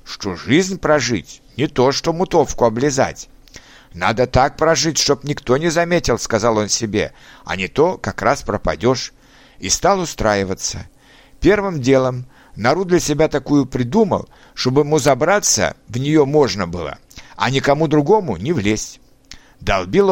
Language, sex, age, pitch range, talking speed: Russian, male, 60-79, 115-155 Hz, 145 wpm